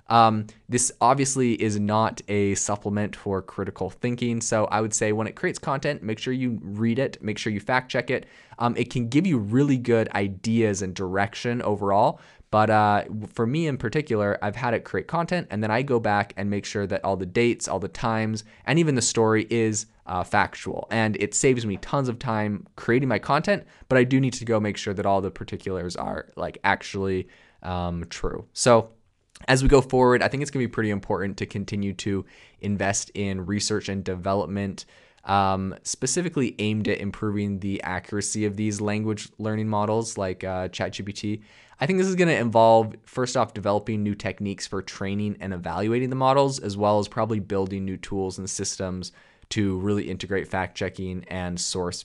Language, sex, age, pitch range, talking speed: English, male, 20-39, 100-120 Hz, 195 wpm